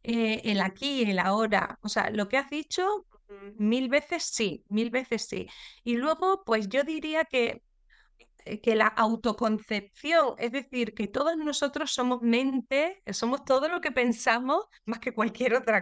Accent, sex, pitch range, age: Spanish, female, 215-265 Hz, 20-39